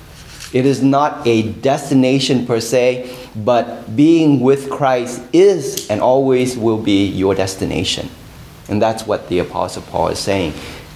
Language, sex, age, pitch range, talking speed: English, male, 30-49, 115-150 Hz, 140 wpm